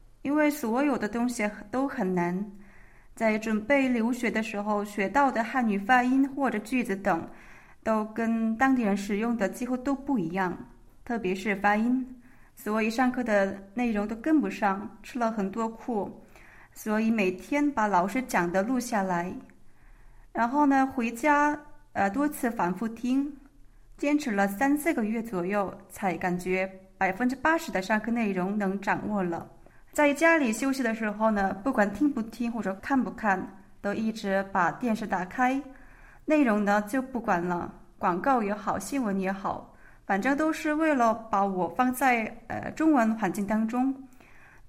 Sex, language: female, Chinese